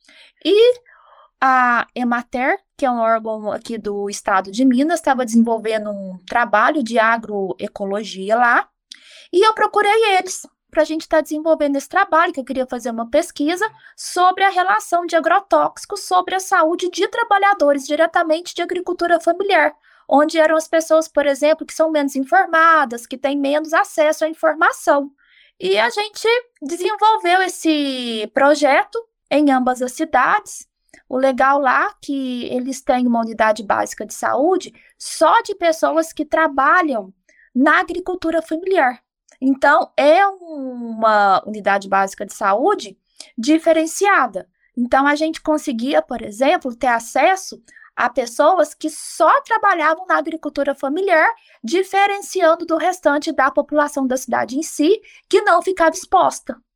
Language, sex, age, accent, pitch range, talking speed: Portuguese, female, 20-39, Brazilian, 255-355 Hz, 140 wpm